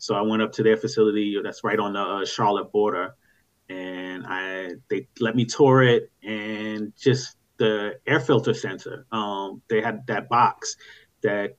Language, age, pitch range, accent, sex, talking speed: English, 30-49, 105-125 Hz, American, male, 175 wpm